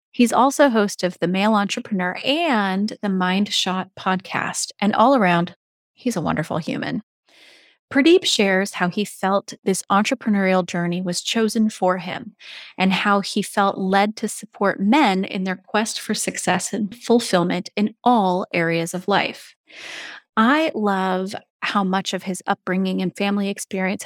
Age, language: 30-49, English